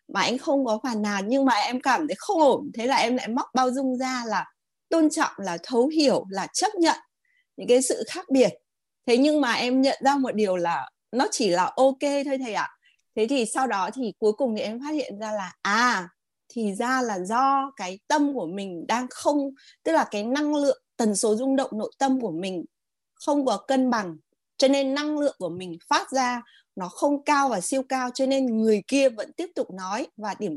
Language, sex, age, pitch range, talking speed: Vietnamese, female, 20-39, 215-275 Hz, 230 wpm